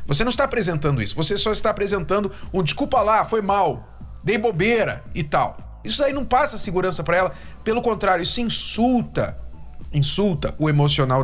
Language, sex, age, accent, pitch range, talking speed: Portuguese, male, 50-69, Brazilian, 185-240 Hz, 170 wpm